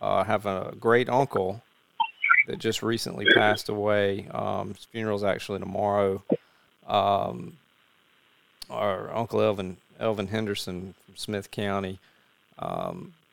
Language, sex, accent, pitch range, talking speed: English, male, American, 100-115 Hz, 115 wpm